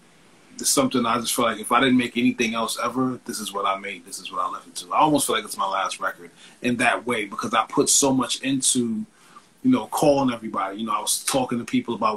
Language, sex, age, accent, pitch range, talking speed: English, male, 30-49, American, 115-140 Hz, 260 wpm